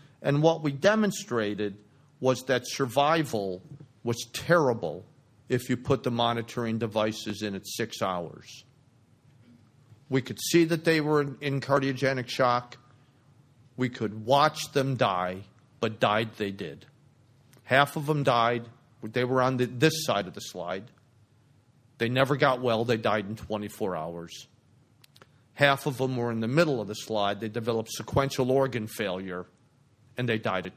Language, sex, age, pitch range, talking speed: English, male, 50-69, 110-140 Hz, 150 wpm